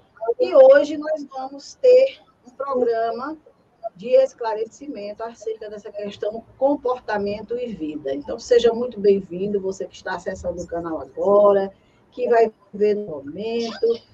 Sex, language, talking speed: female, Portuguese, 130 wpm